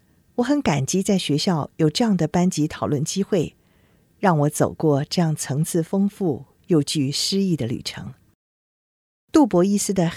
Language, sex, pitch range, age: Chinese, female, 140-195 Hz, 50-69